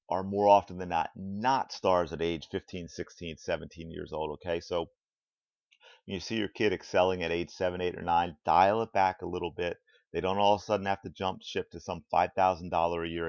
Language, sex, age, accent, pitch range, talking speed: English, male, 30-49, American, 90-110 Hz, 210 wpm